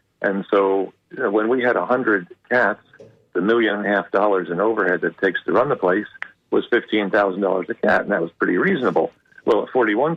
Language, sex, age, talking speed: English, male, 50-69, 200 wpm